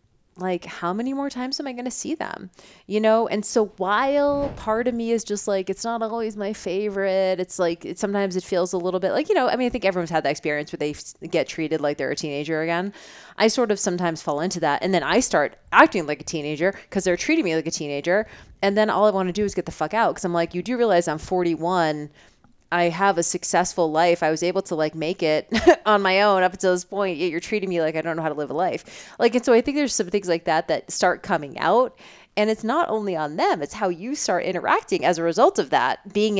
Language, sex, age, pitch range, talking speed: English, female, 30-49, 170-220 Hz, 265 wpm